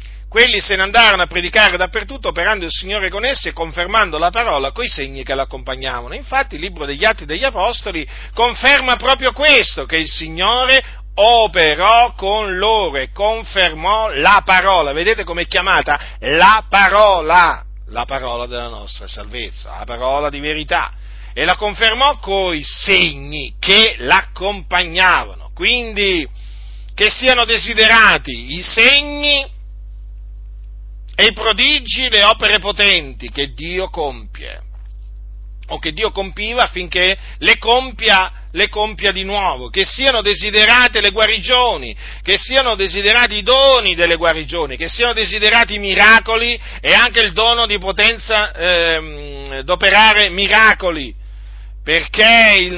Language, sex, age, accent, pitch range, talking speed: Italian, male, 50-69, native, 145-225 Hz, 130 wpm